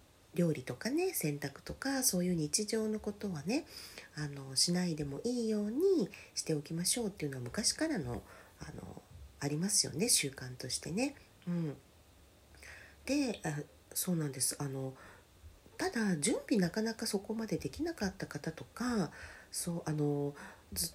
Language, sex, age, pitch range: Japanese, female, 40-59, 130-215 Hz